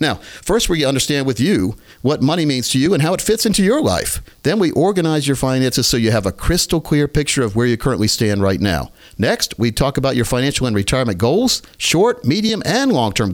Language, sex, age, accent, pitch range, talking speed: English, male, 50-69, American, 110-160 Hz, 225 wpm